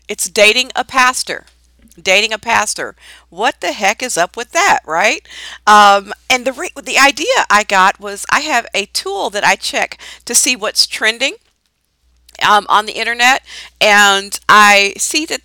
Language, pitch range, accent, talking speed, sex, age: English, 175-250 Hz, American, 165 wpm, female, 50-69